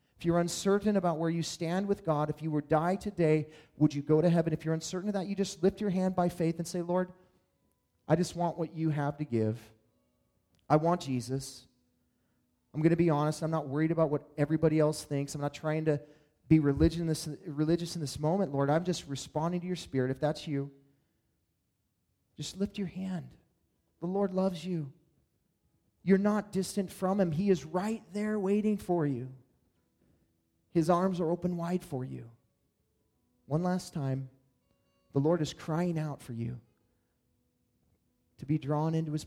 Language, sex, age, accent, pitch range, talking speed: English, male, 30-49, American, 135-180 Hz, 185 wpm